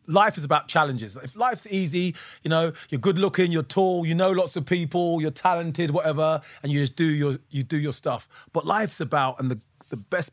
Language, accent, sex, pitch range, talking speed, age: English, British, male, 140-180 Hz, 220 wpm, 30-49